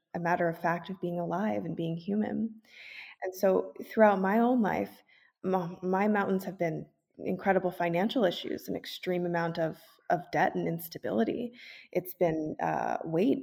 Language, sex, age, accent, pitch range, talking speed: Romanian, female, 20-39, American, 160-195 Hz, 155 wpm